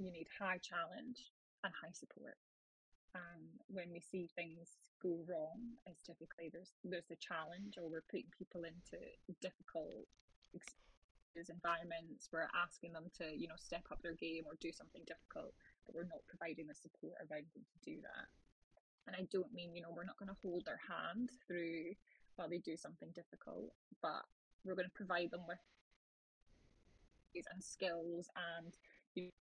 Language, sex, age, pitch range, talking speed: English, female, 10-29, 170-190 Hz, 175 wpm